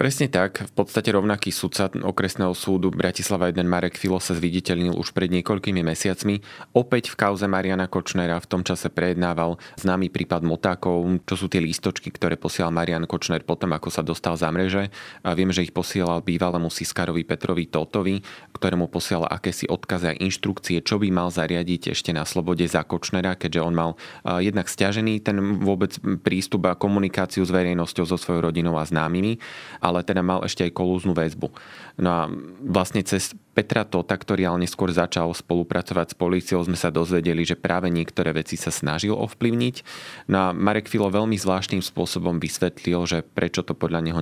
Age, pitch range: 30-49, 85-95 Hz